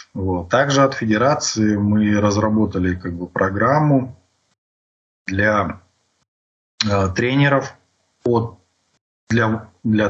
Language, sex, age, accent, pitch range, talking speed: Russian, male, 20-39, native, 95-125 Hz, 90 wpm